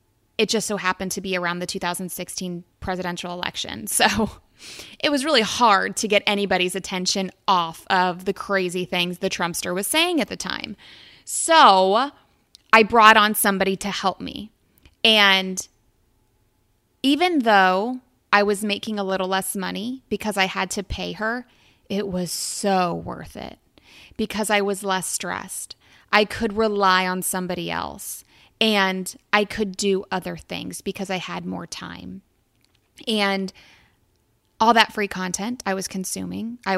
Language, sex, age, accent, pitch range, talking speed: English, female, 20-39, American, 180-215 Hz, 150 wpm